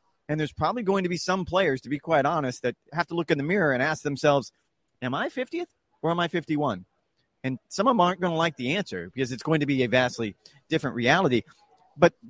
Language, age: English, 30-49